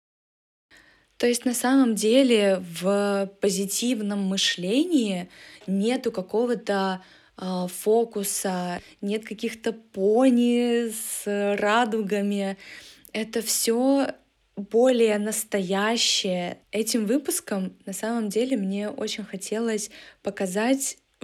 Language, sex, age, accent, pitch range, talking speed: Russian, female, 20-39, native, 195-230 Hz, 85 wpm